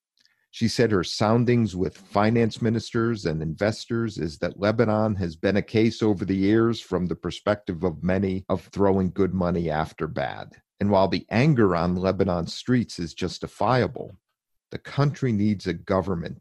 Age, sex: 50-69, male